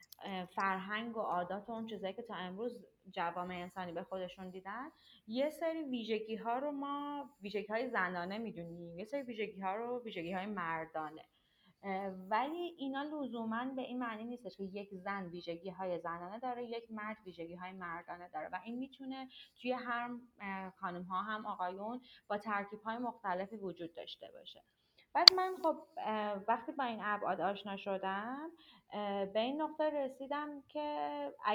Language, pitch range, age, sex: Persian, 180-245 Hz, 30-49, female